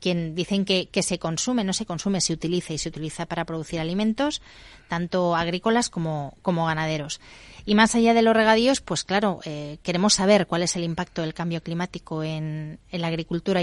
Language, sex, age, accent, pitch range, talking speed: Spanish, female, 30-49, Spanish, 165-190 Hz, 195 wpm